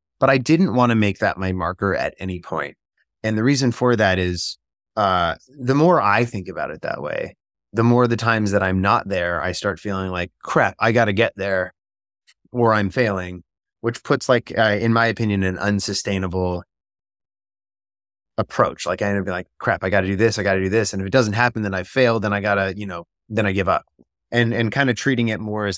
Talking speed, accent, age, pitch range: 240 wpm, American, 20-39, 95-115 Hz